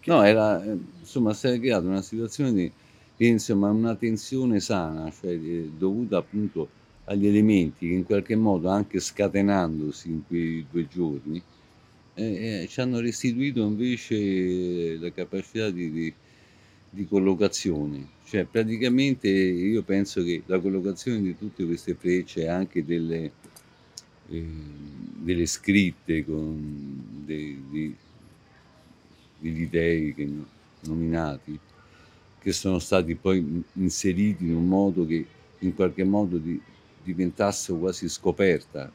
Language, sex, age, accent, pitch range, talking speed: Italian, male, 50-69, native, 85-100 Hz, 125 wpm